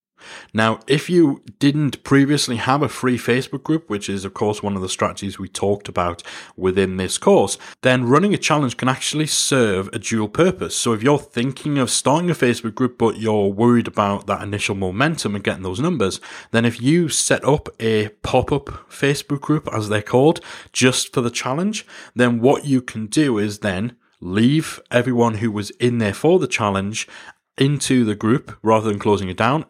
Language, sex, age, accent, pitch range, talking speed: English, male, 30-49, British, 105-135 Hz, 190 wpm